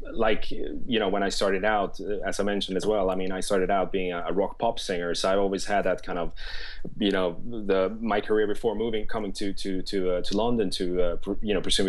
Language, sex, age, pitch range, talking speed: English, male, 20-39, 95-110 Hz, 240 wpm